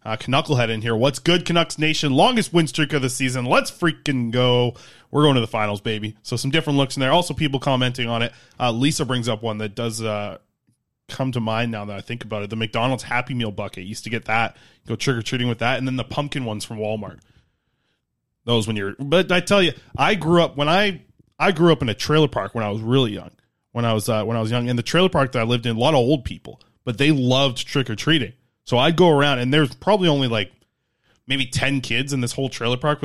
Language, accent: English, American